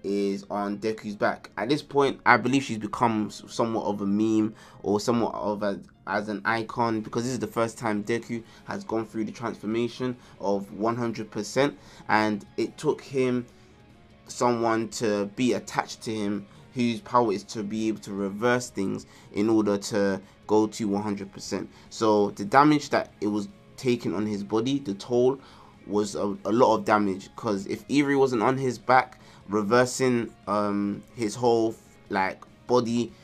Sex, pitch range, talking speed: male, 100-120 Hz, 165 wpm